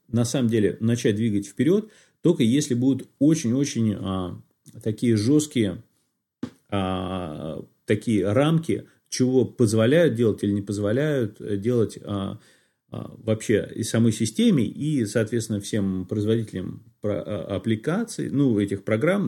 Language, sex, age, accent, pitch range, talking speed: Russian, male, 30-49, native, 105-140 Hz, 120 wpm